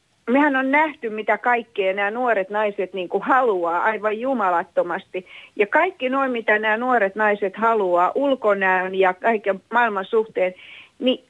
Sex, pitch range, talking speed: female, 195-270 Hz, 140 wpm